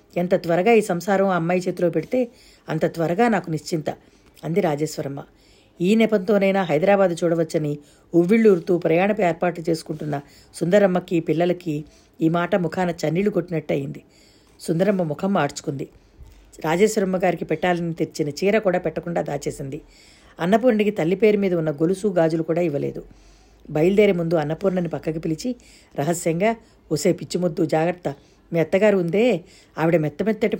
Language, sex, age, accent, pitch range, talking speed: Telugu, female, 50-69, native, 160-205 Hz, 120 wpm